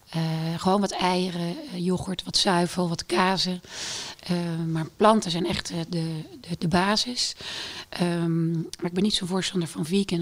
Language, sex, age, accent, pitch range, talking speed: Dutch, female, 40-59, Dutch, 170-190 Hz, 160 wpm